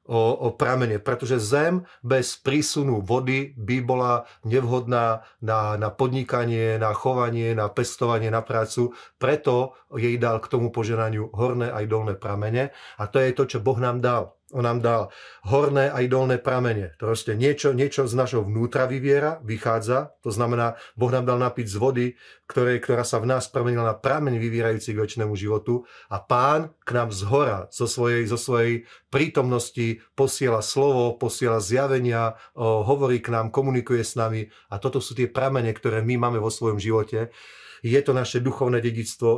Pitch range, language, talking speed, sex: 115-130 Hz, Slovak, 170 wpm, male